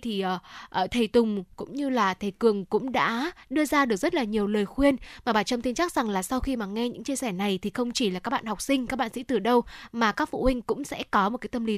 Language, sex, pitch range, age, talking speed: Vietnamese, female, 210-270 Hz, 10-29, 295 wpm